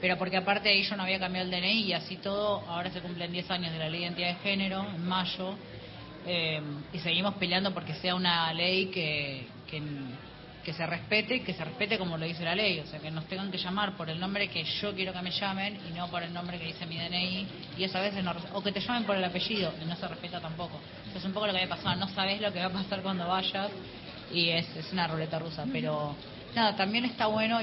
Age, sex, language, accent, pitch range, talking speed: 20-39, female, Spanish, Argentinian, 165-190 Hz, 255 wpm